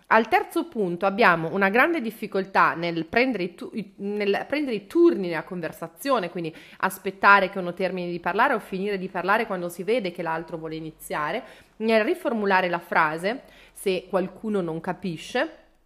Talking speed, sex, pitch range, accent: 150 wpm, female, 180-255 Hz, native